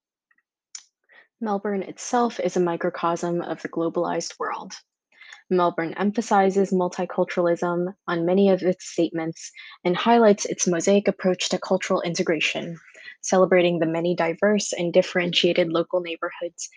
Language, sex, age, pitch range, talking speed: English, female, 20-39, 170-190 Hz, 120 wpm